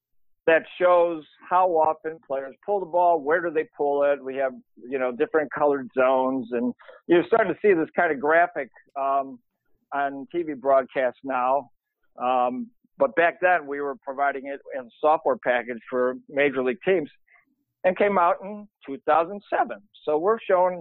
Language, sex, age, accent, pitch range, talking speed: English, male, 60-79, American, 135-180 Hz, 165 wpm